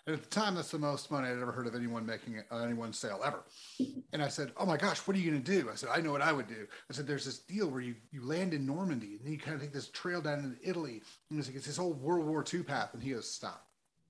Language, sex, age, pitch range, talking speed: English, male, 30-49, 120-155 Hz, 315 wpm